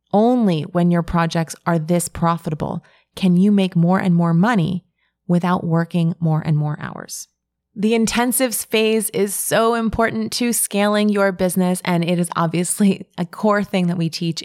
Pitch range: 165-200 Hz